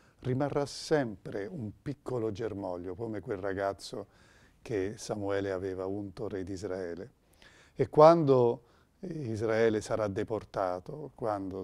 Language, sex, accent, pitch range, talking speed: Italian, male, native, 95-125 Hz, 110 wpm